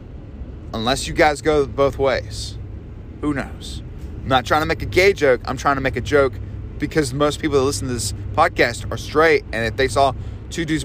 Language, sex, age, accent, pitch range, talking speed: English, male, 30-49, American, 105-150 Hz, 210 wpm